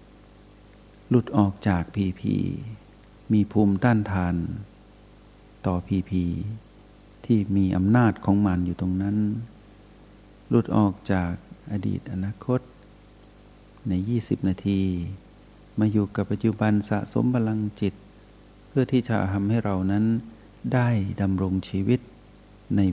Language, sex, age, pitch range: Thai, male, 60-79, 95-110 Hz